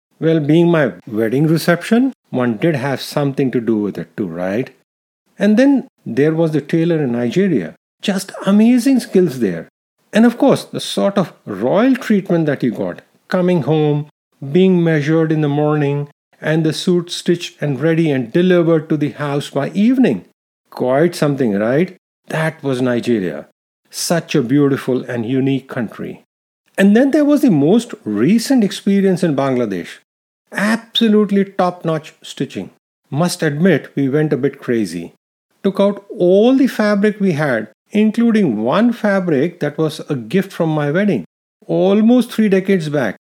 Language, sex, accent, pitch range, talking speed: English, male, Indian, 150-205 Hz, 155 wpm